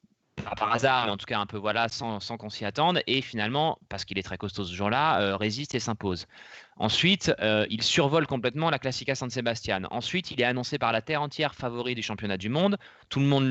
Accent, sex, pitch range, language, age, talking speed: French, male, 105-130 Hz, French, 20-39, 230 wpm